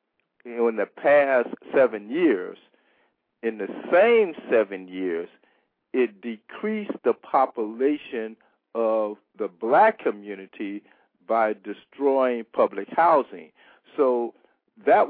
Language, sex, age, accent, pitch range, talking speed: English, male, 50-69, American, 115-150 Hz, 95 wpm